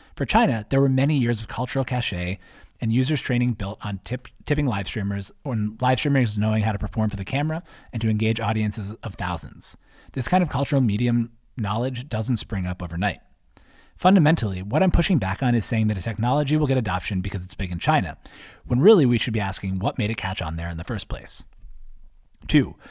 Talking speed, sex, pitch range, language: 210 wpm, male, 100-130 Hz, English